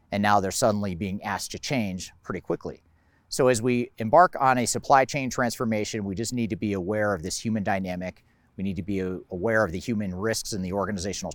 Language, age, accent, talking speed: English, 40-59, American, 215 wpm